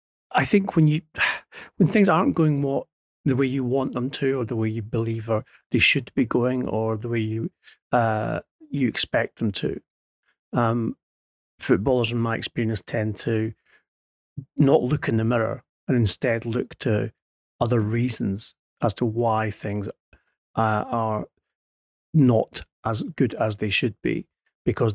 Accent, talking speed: British, 160 wpm